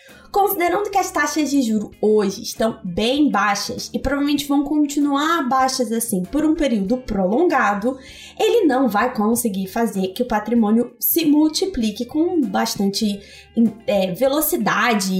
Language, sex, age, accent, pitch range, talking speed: Portuguese, female, 20-39, Brazilian, 235-335 Hz, 135 wpm